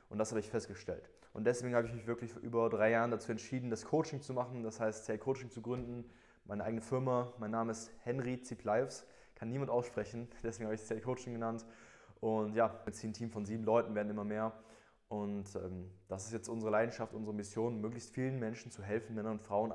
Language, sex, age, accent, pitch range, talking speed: German, male, 20-39, German, 110-120 Hz, 215 wpm